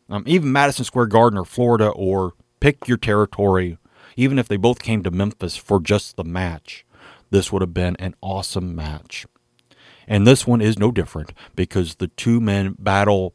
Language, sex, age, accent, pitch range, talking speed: English, male, 40-59, American, 90-120 Hz, 180 wpm